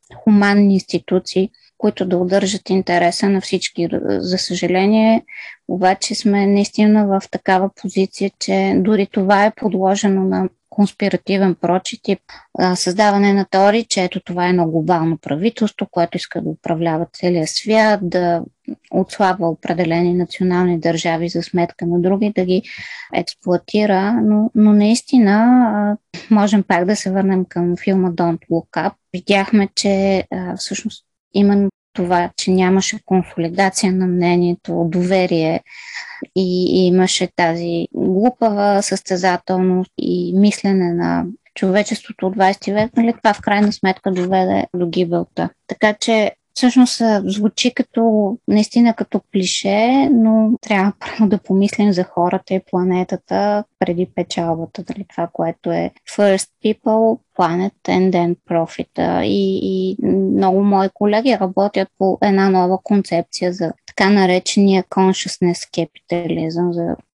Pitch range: 180-210 Hz